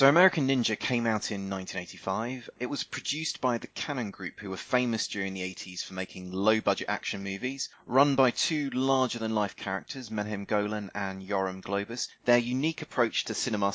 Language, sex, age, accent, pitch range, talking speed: English, male, 20-39, British, 95-125 Hz, 175 wpm